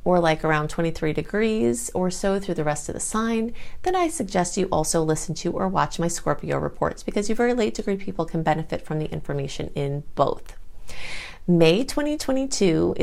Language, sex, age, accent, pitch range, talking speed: English, female, 30-49, American, 155-200 Hz, 185 wpm